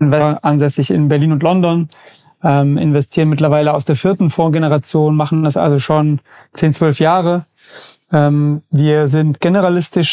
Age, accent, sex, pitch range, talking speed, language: 30-49, German, male, 150-165 Hz, 135 wpm, German